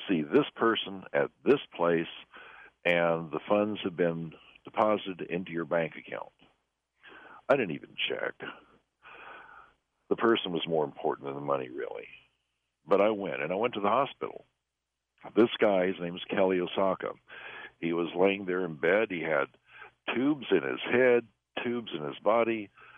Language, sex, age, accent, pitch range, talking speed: English, male, 60-79, American, 75-100 Hz, 160 wpm